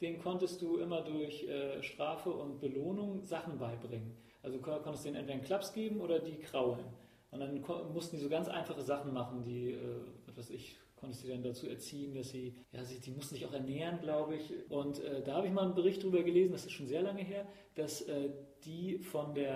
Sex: male